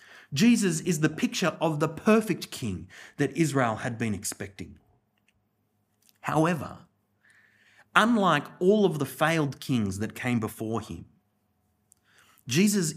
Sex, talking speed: male, 115 wpm